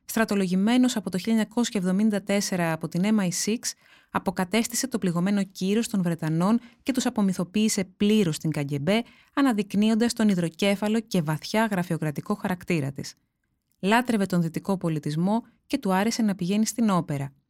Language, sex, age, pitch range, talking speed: Greek, female, 20-39, 170-225 Hz, 130 wpm